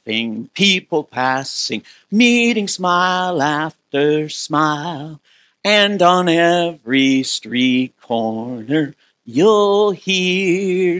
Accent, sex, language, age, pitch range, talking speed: American, male, English, 50-69, 125-150 Hz, 70 wpm